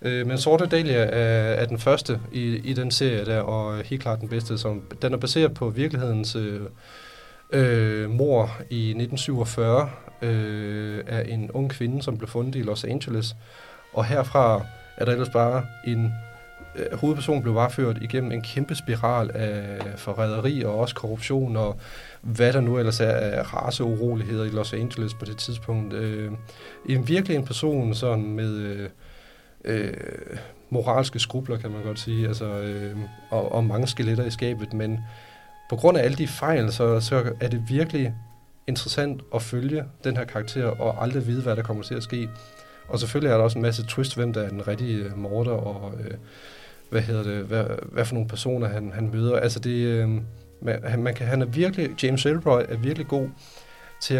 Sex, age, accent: male, 30-49, Danish